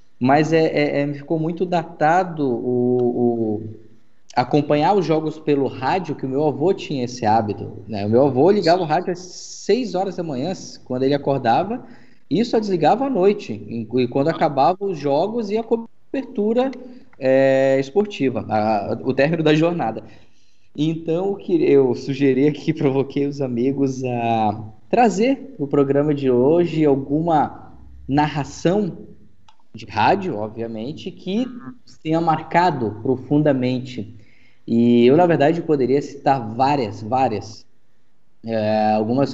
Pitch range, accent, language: 125-170 Hz, Brazilian, Portuguese